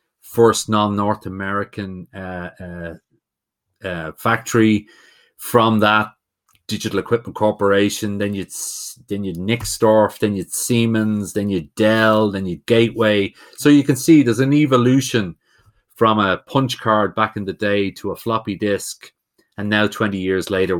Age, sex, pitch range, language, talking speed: 30-49, male, 95-115 Hz, English, 145 wpm